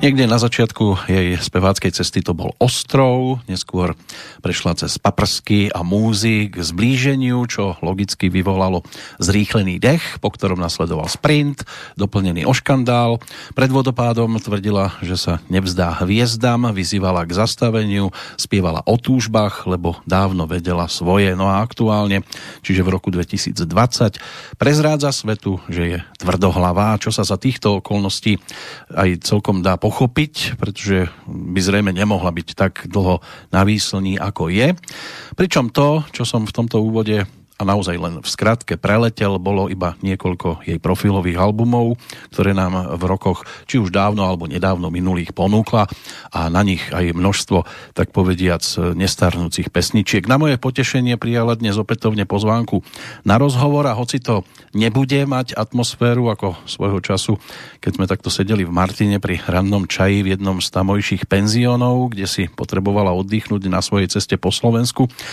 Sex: male